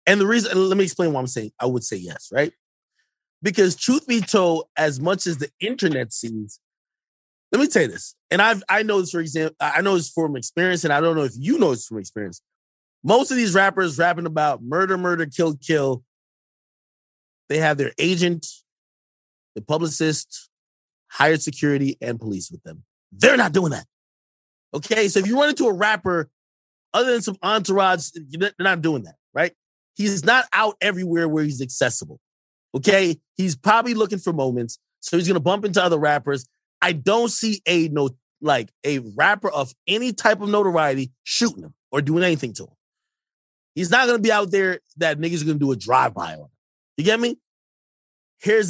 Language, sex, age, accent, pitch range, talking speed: English, male, 30-49, American, 135-195 Hz, 195 wpm